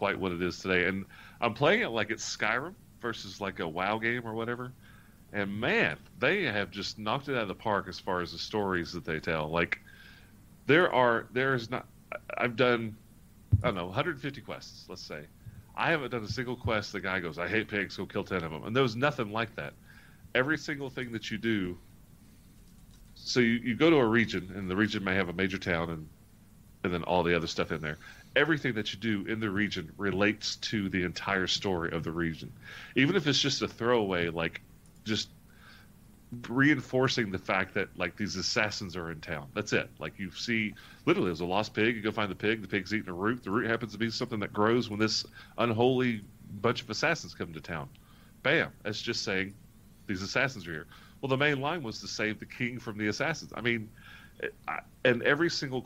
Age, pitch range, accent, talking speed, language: 40-59, 95-120 Hz, American, 215 wpm, English